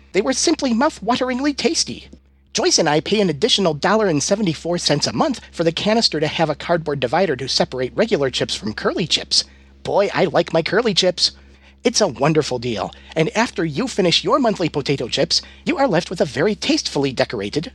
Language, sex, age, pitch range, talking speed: English, male, 40-59, 130-205 Hz, 205 wpm